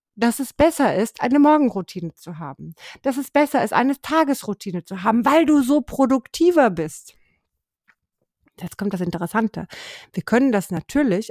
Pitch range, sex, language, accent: 190-245 Hz, female, German, German